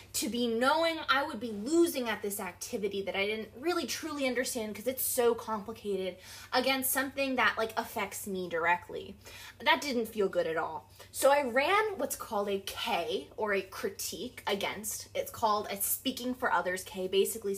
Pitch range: 200-270 Hz